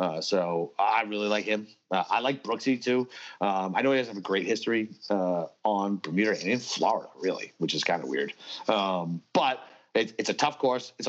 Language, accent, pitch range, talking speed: English, American, 100-125 Hz, 205 wpm